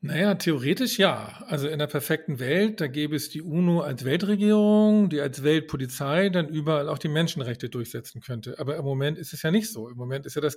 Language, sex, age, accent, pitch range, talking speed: German, male, 40-59, German, 140-185 Hz, 215 wpm